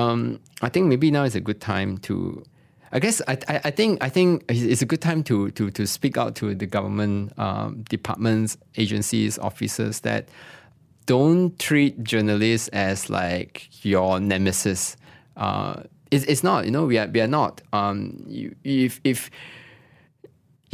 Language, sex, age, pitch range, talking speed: English, male, 20-39, 100-135 Hz, 165 wpm